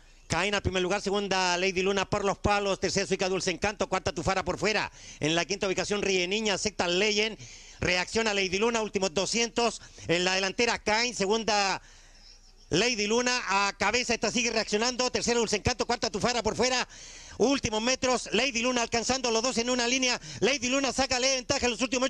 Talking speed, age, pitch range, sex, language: 185 wpm, 40-59, 155-215 Hz, male, Spanish